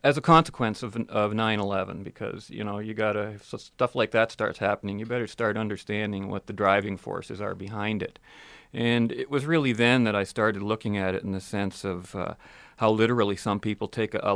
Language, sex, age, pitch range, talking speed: English, male, 40-59, 100-120 Hz, 210 wpm